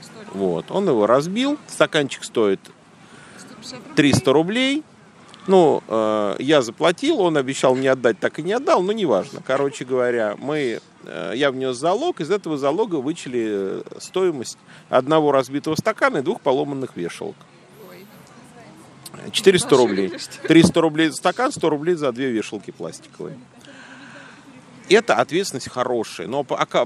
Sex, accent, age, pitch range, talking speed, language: male, native, 40-59, 125-180 Hz, 130 wpm, Russian